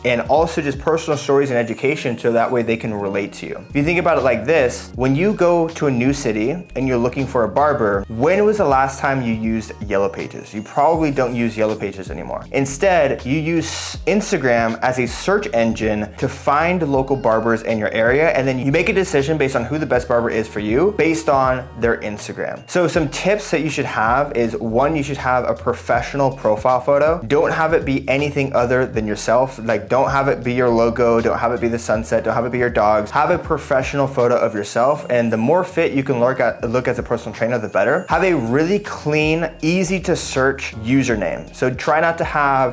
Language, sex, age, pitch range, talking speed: English, male, 20-39, 115-145 Hz, 225 wpm